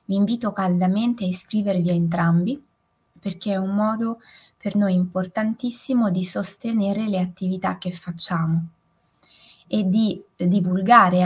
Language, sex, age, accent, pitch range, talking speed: Italian, female, 20-39, native, 175-205 Hz, 125 wpm